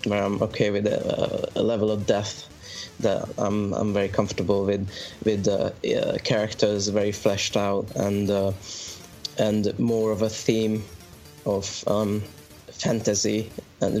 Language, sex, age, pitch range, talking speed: English, male, 20-39, 100-110 Hz, 145 wpm